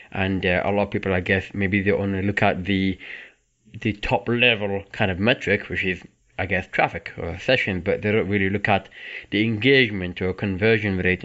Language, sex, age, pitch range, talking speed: English, male, 20-39, 95-110 Hz, 205 wpm